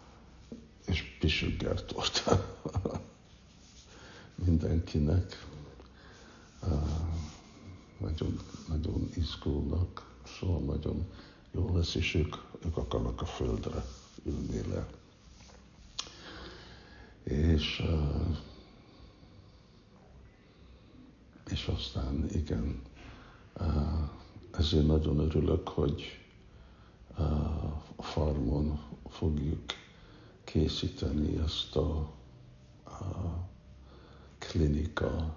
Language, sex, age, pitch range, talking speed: Hungarian, male, 60-79, 75-90 Hz, 65 wpm